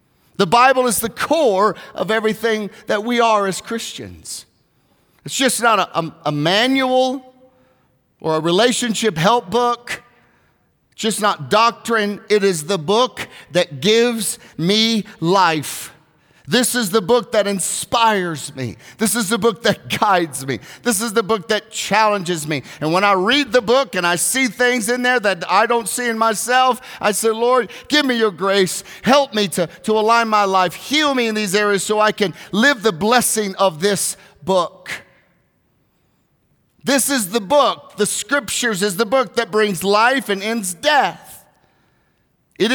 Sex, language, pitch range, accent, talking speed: male, English, 195-240 Hz, American, 165 wpm